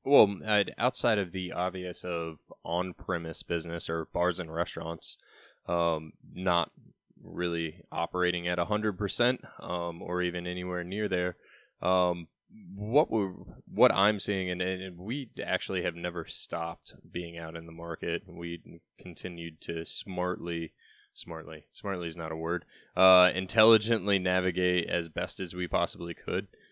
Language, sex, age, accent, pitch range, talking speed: English, male, 20-39, American, 85-95 Hz, 135 wpm